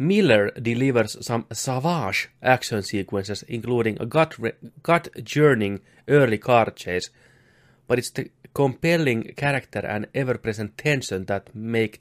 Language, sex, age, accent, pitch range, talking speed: Finnish, male, 30-49, native, 110-135 Hz, 120 wpm